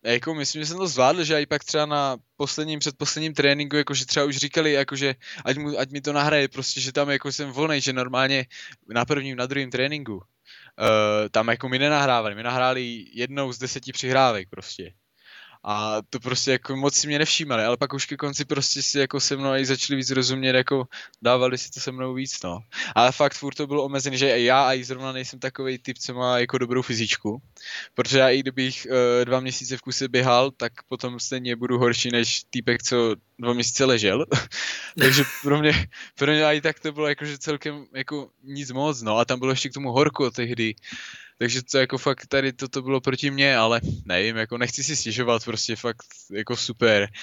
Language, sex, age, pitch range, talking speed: Czech, male, 20-39, 120-140 Hz, 210 wpm